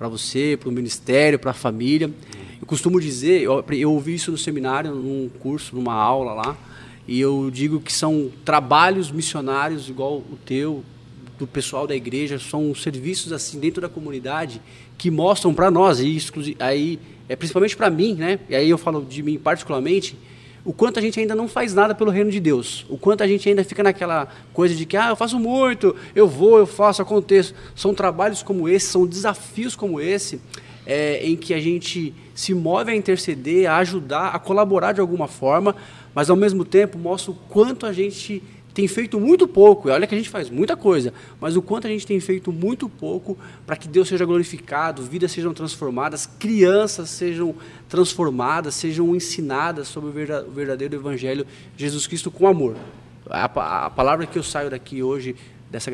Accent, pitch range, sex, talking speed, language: Brazilian, 135-190 Hz, male, 185 wpm, Portuguese